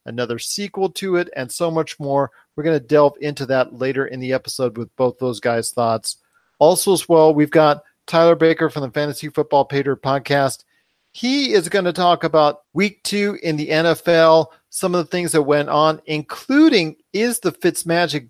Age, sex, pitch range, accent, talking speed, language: 40-59, male, 140-175 Hz, American, 190 wpm, English